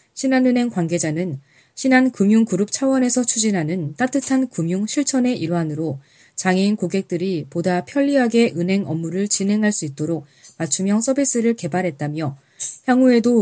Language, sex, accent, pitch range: Korean, female, native, 165-230 Hz